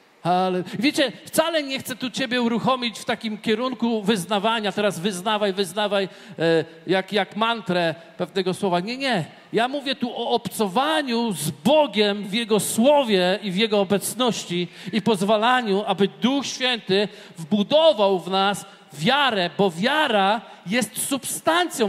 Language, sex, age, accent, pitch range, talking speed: Polish, male, 50-69, native, 200-255 Hz, 130 wpm